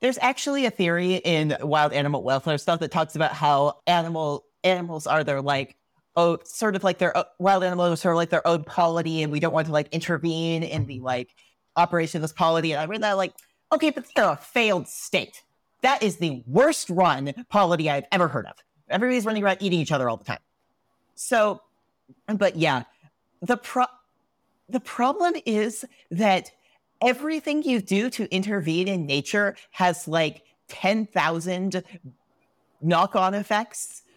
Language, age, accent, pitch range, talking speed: English, 30-49, American, 165-205 Hz, 170 wpm